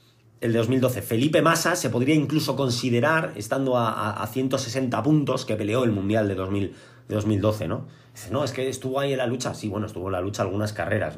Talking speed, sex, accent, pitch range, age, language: 210 wpm, male, Spanish, 105-130 Hz, 30-49, Spanish